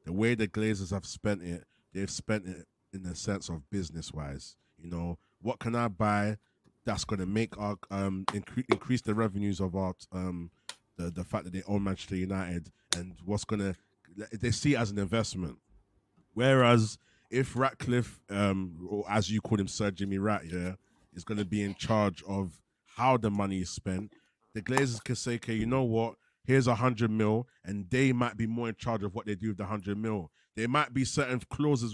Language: English